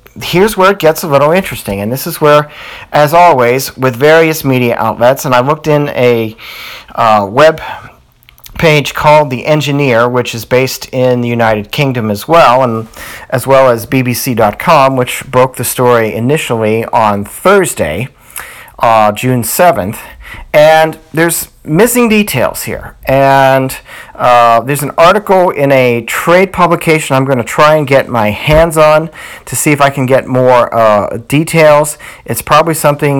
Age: 40-59